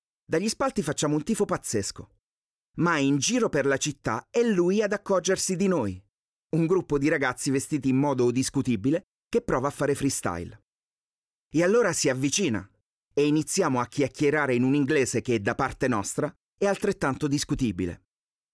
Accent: native